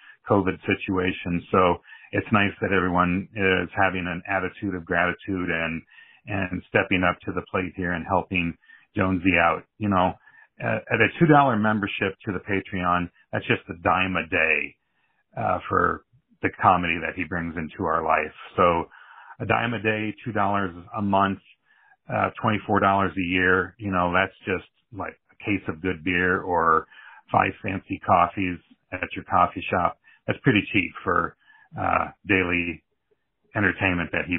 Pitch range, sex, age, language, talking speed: 90-110 Hz, male, 40-59, English, 155 wpm